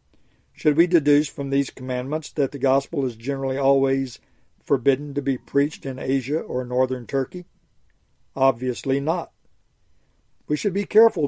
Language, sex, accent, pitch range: English, male, American, 130-160 Hz